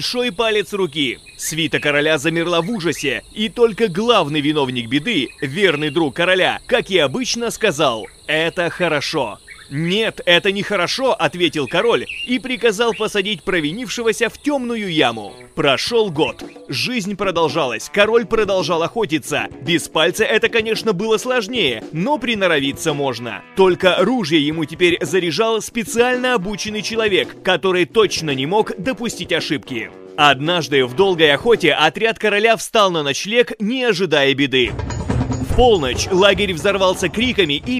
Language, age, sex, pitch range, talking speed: Russian, 30-49, male, 165-230 Hz, 130 wpm